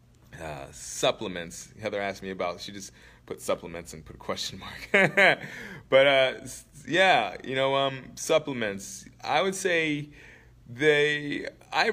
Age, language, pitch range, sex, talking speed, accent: 30-49, English, 95-125 Hz, male, 135 wpm, American